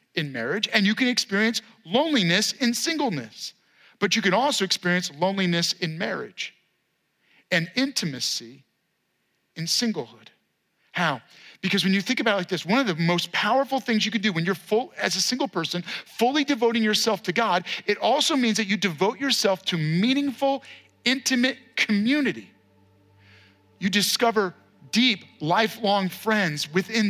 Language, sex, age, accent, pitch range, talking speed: English, male, 40-59, American, 185-255 Hz, 150 wpm